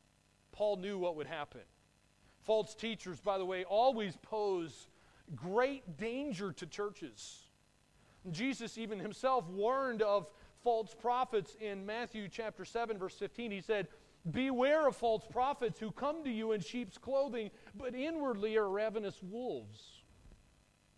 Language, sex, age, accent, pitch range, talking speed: English, male, 30-49, American, 185-225 Hz, 135 wpm